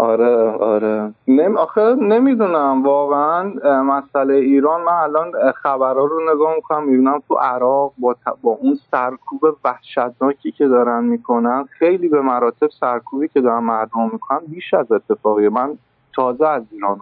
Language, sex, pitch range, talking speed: English, male, 115-140 Hz, 135 wpm